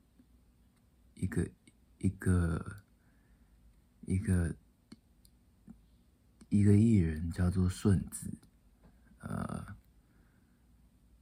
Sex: male